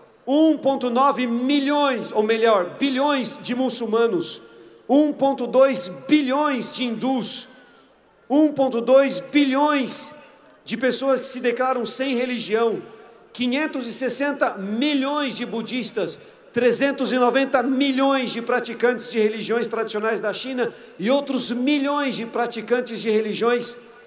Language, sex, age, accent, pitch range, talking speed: Portuguese, male, 50-69, Brazilian, 225-275 Hz, 95 wpm